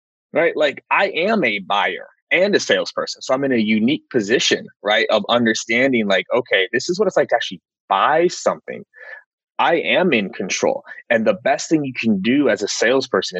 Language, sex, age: English, male, 30-49